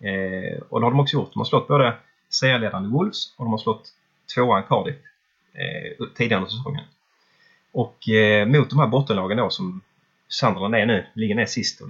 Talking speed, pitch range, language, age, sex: 190 wpm, 105-140 Hz, English, 30-49, male